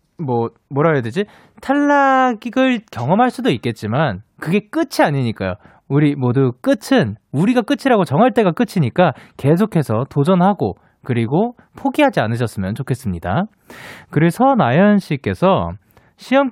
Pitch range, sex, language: 135-215 Hz, male, Korean